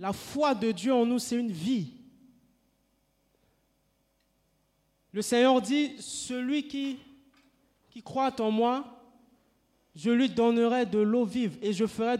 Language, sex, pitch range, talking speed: French, male, 190-255 Hz, 135 wpm